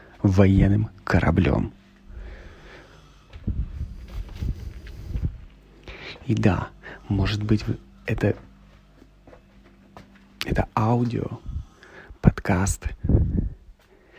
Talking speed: 40 wpm